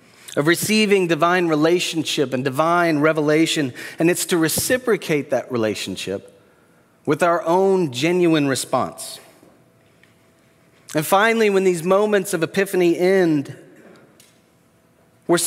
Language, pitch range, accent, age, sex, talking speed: English, 125-175 Hz, American, 30-49, male, 105 wpm